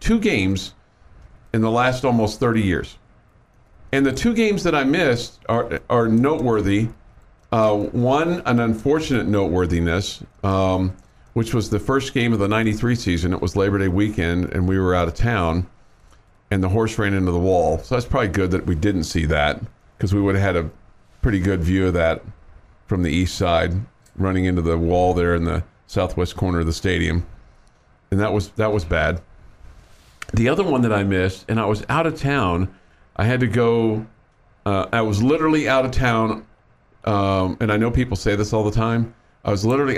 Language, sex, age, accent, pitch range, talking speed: English, male, 50-69, American, 95-115 Hz, 195 wpm